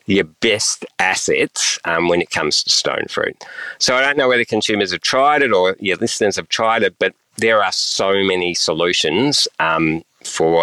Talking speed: 185 wpm